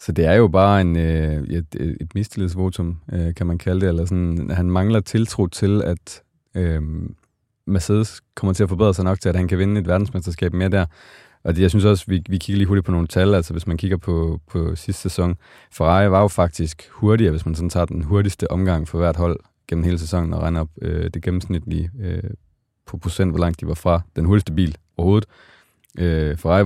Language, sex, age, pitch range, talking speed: Danish, male, 30-49, 85-100 Hz, 200 wpm